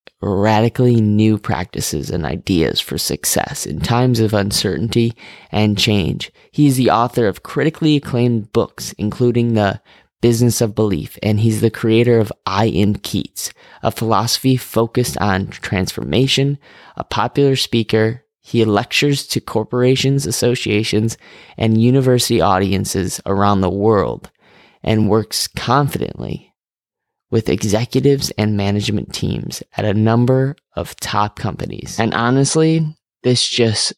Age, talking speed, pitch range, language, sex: 20-39, 125 wpm, 105-125 Hz, English, male